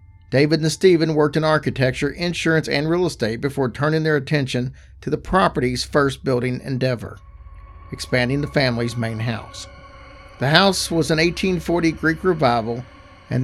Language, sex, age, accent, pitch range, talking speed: English, male, 50-69, American, 105-155 Hz, 145 wpm